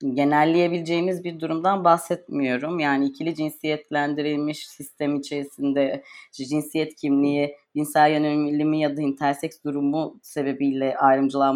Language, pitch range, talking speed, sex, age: Turkish, 140-155 Hz, 100 wpm, female, 30-49